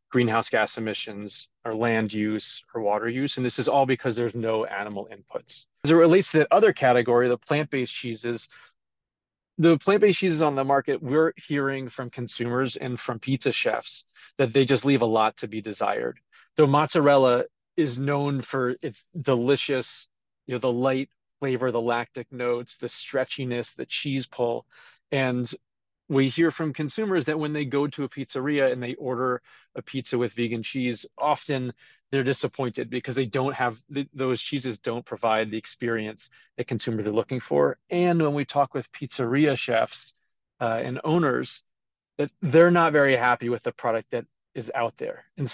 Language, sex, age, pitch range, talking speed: English, male, 30-49, 120-140 Hz, 175 wpm